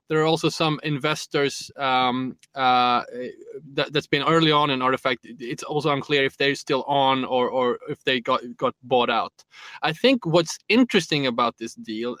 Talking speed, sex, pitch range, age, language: 175 wpm, male, 130-160 Hz, 20-39, English